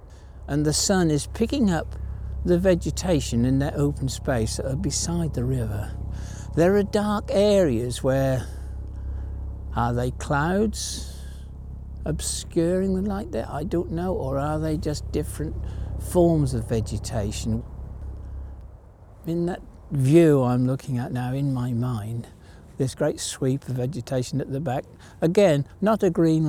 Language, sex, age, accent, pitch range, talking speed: English, male, 60-79, British, 90-150 Hz, 140 wpm